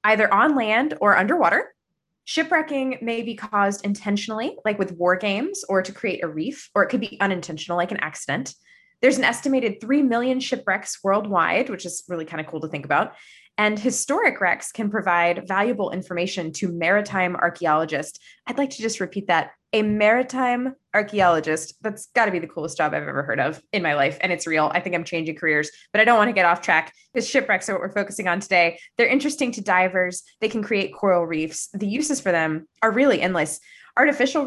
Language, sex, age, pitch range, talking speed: English, female, 20-39, 175-245 Hz, 205 wpm